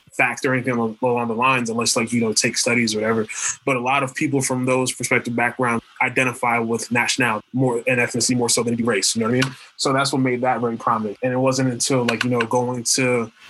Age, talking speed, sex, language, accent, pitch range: 20-39, 235 wpm, male, English, American, 120-135 Hz